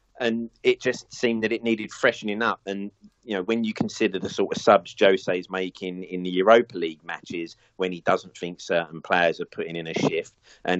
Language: English